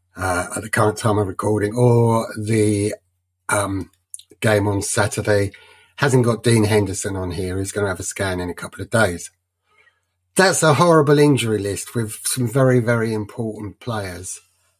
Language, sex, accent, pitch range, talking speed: English, male, British, 100-130 Hz, 165 wpm